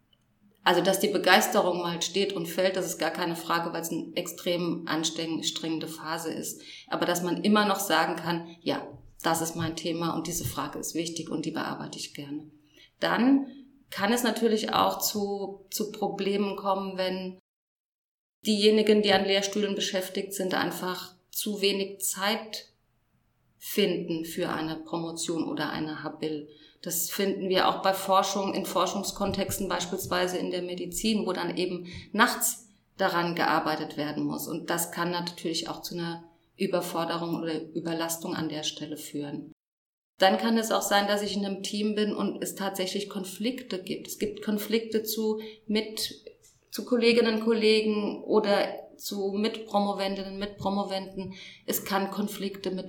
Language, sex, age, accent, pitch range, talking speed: German, female, 30-49, German, 165-205 Hz, 155 wpm